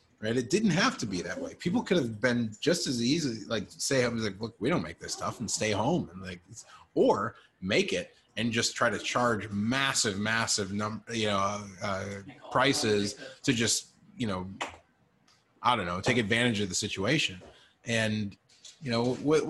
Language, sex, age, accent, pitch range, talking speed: English, male, 30-49, American, 100-130 Hz, 195 wpm